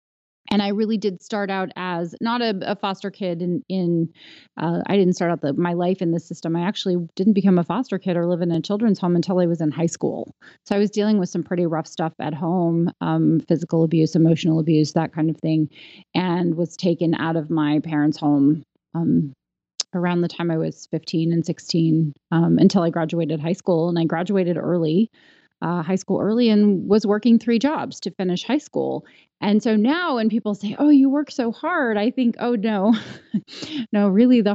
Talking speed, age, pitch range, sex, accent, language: 210 wpm, 30-49, 165-205 Hz, female, American, English